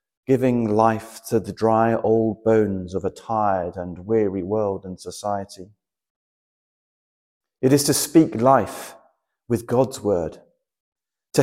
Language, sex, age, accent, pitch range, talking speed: English, male, 40-59, British, 105-140 Hz, 125 wpm